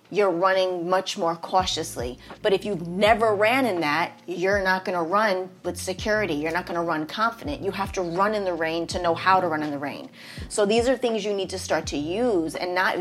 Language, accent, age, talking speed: English, American, 30-49, 230 wpm